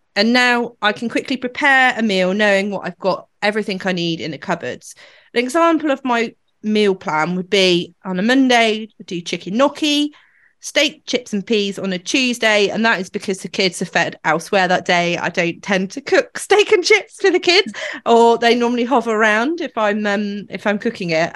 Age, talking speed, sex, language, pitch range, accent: 30-49, 205 wpm, female, English, 185-245 Hz, British